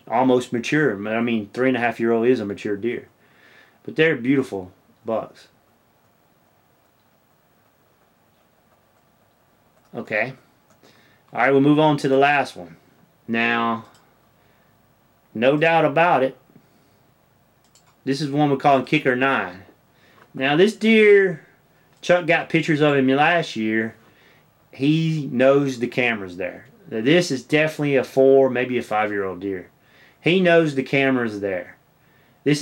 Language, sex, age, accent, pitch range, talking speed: English, male, 30-49, American, 120-150 Hz, 130 wpm